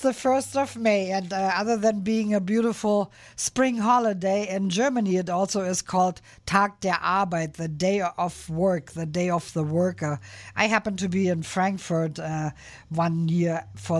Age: 50-69